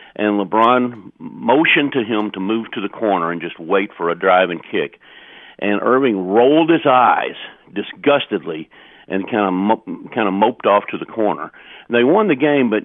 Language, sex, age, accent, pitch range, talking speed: English, male, 50-69, American, 95-120 Hz, 180 wpm